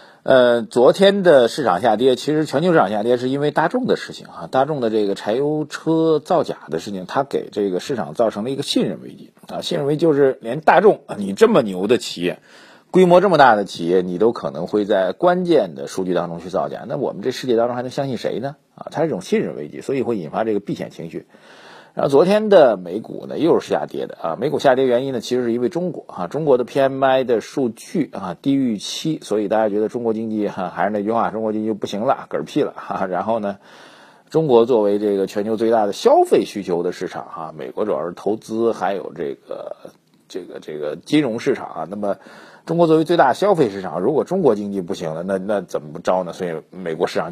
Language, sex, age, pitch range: Chinese, male, 50-69, 110-165 Hz